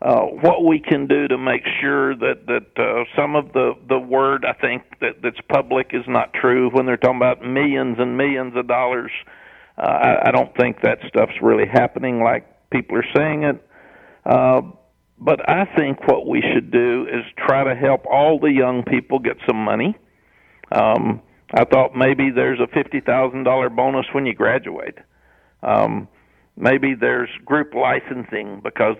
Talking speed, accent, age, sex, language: 170 wpm, American, 50-69, male, English